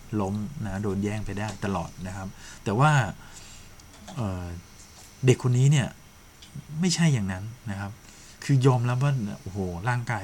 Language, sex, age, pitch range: Thai, male, 20-39, 95-120 Hz